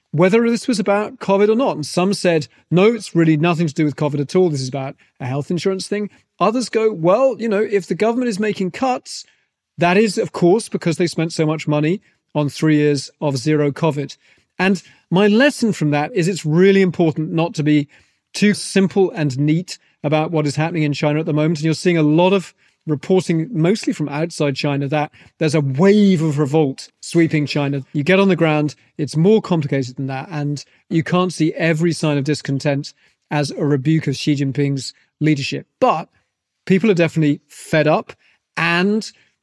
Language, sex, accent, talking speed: English, male, British, 200 wpm